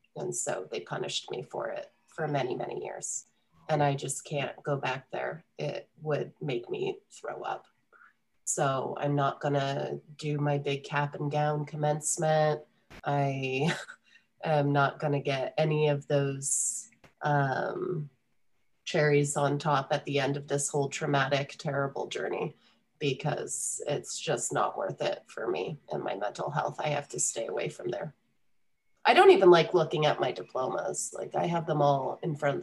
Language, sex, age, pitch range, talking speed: English, female, 30-49, 140-165 Hz, 170 wpm